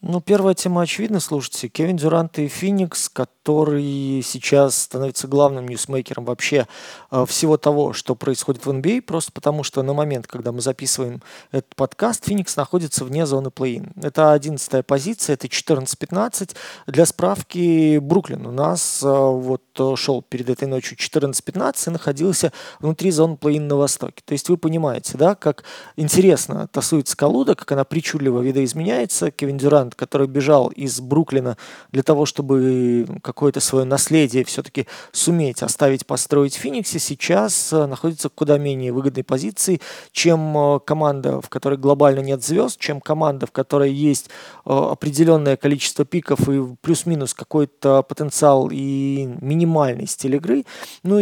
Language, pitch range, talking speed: Russian, 135-160 Hz, 140 wpm